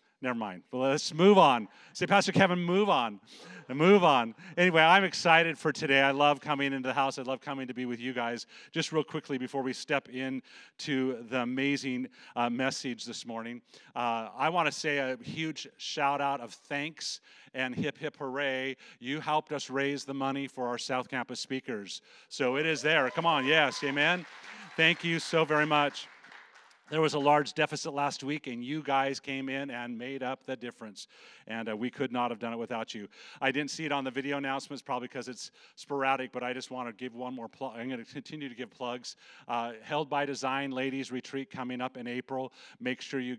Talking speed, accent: 210 wpm, American